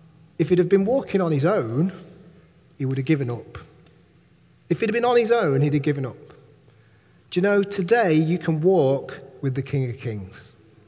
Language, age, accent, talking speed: English, 40-59, British, 200 wpm